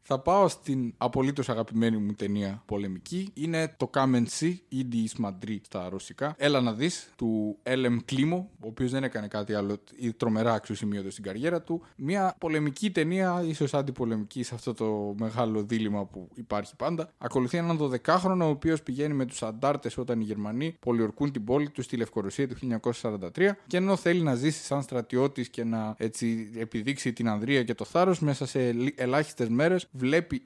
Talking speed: 160 wpm